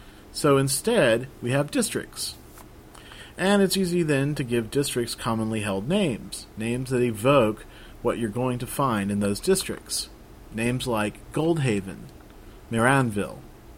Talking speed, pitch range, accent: 130 wpm, 105-145 Hz, American